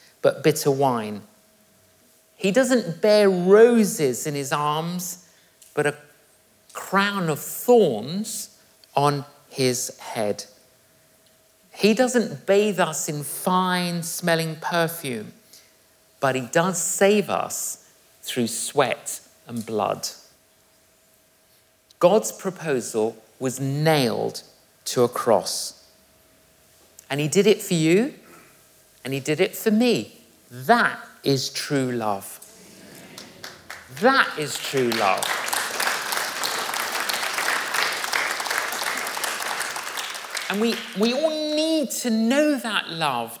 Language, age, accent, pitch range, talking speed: English, 50-69, British, 145-230 Hz, 100 wpm